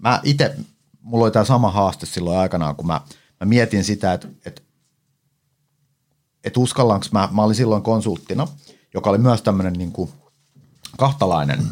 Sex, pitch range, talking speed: male, 100-145 Hz, 140 wpm